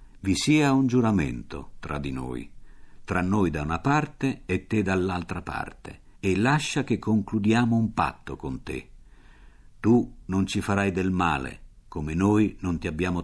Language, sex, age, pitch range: Italian, male, 60-79, 85-120 Hz